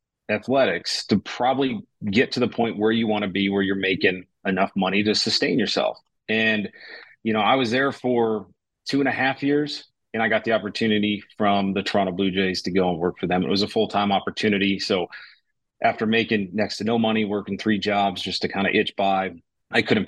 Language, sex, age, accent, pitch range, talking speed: English, male, 30-49, American, 100-110 Hz, 210 wpm